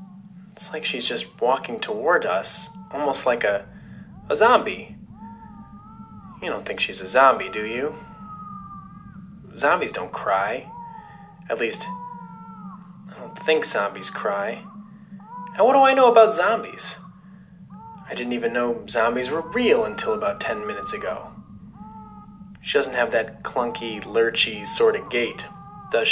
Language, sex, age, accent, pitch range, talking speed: English, male, 20-39, American, 185-225 Hz, 135 wpm